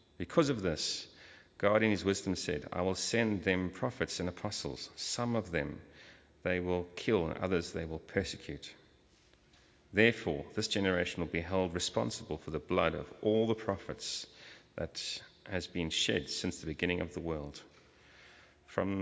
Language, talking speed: English, 160 wpm